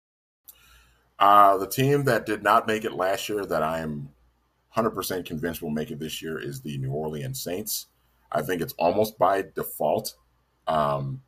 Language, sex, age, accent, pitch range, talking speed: English, male, 30-49, American, 75-110 Hz, 175 wpm